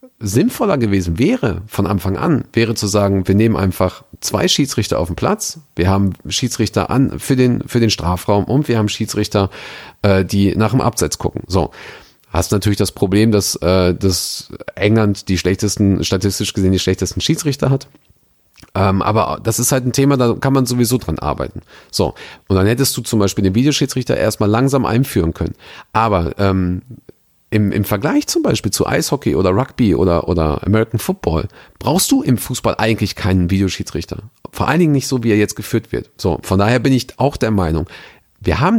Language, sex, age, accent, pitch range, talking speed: German, male, 40-59, German, 95-125 Hz, 185 wpm